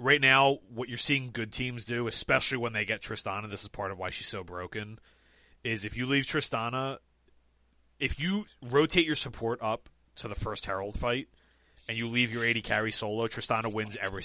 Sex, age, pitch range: male, 30-49, 95-125 Hz